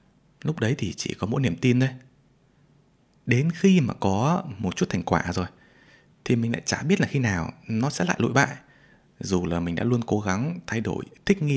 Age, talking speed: 20-39, 220 wpm